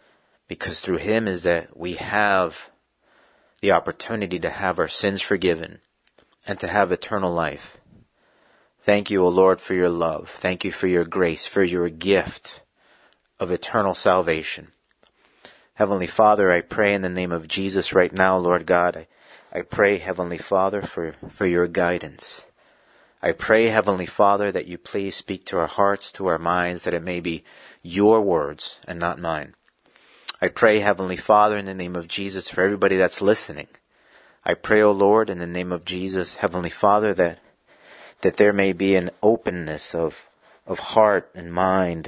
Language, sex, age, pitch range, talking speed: English, male, 40-59, 90-100 Hz, 170 wpm